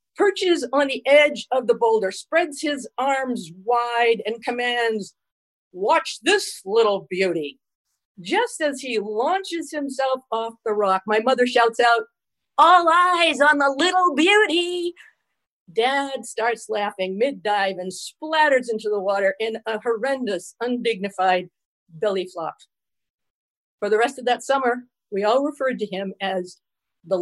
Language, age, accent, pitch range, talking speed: English, 50-69, American, 215-295 Hz, 140 wpm